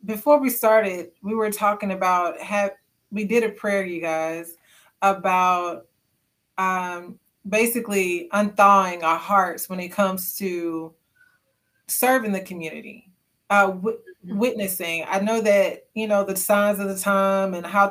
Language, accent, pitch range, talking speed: English, American, 185-210 Hz, 135 wpm